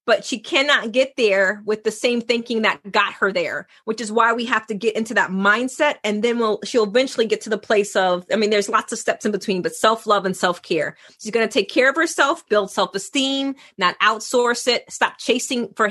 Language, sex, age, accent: English, female, 30-49, American